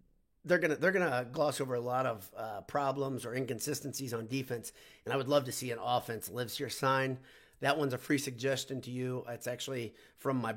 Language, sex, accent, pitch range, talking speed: English, male, American, 120-140 Hz, 215 wpm